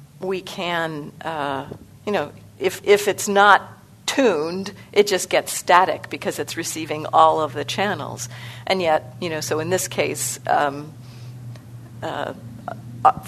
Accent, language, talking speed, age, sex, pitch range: American, English, 140 wpm, 50-69, female, 155-205 Hz